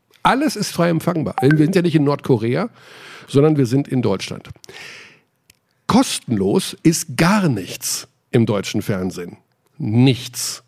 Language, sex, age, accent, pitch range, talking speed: German, male, 50-69, German, 125-180 Hz, 130 wpm